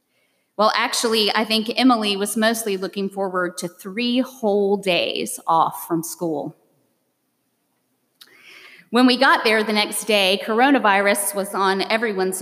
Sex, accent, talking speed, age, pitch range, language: female, American, 130 wpm, 30-49, 190-245 Hz, English